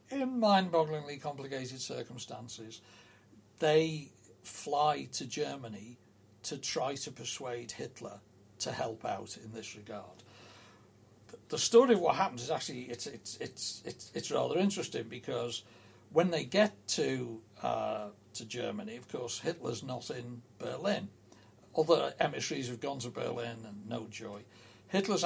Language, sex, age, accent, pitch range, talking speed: English, male, 60-79, British, 110-150 Hz, 135 wpm